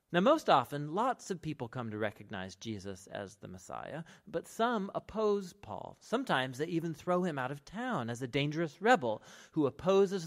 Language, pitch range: English, 125-185 Hz